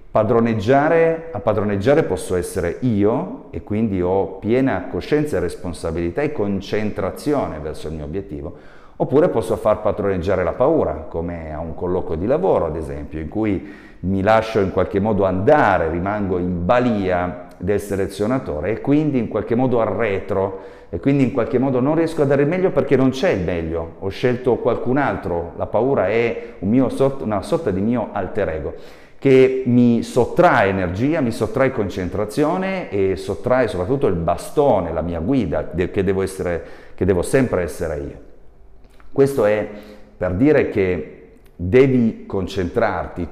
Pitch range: 90-130 Hz